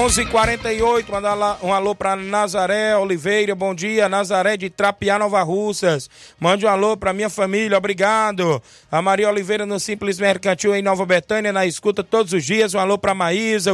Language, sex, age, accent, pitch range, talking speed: Portuguese, male, 20-39, Brazilian, 200-215 Hz, 165 wpm